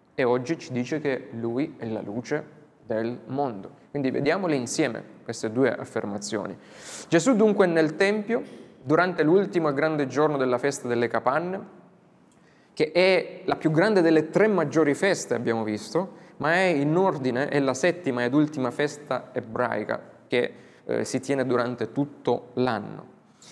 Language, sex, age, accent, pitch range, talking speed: Italian, male, 20-39, native, 125-165 Hz, 150 wpm